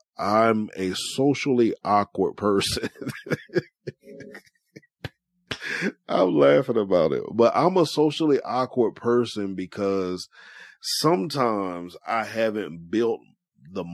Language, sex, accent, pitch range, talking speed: English, male, American, 95-120 Hz, 90 wpm